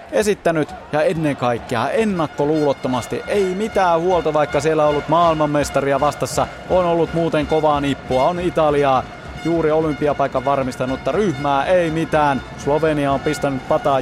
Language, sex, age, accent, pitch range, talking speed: Finnish, male, 30-49, native, 130-160 Hz, 135 wpm